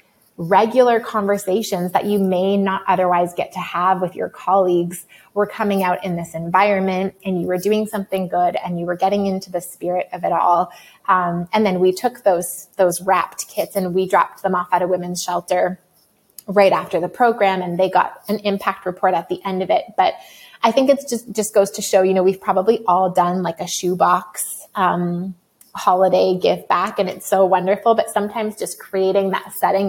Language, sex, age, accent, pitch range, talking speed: English, female, 20-39, American, 180-200 Hz, 200 wpm